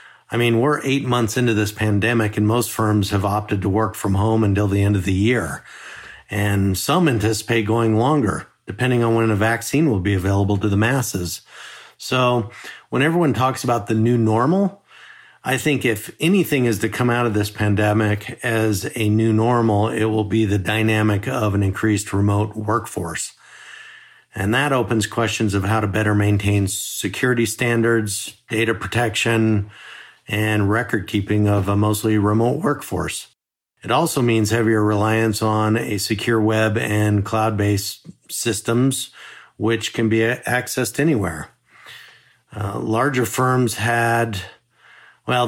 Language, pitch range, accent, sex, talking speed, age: English, 105-120 Hz, American, male, 150 wpm, 50-69